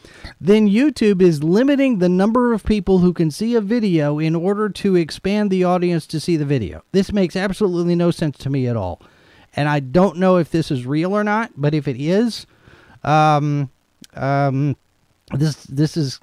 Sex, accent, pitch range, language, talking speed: male, American, 140-185 Hz, English, 190 wpm